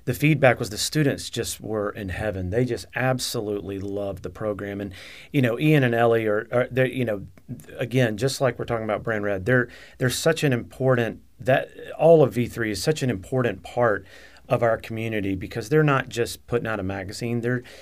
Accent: American